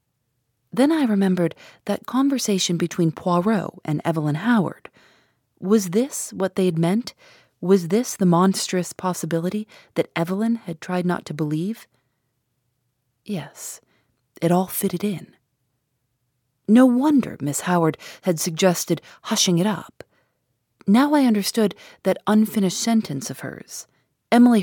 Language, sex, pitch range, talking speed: English, female, 145-205 Hz, 125 wpm